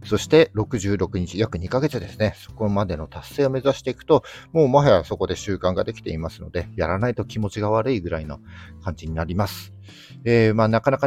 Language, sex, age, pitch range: Japanese, male, 50-69, 100-130 Hz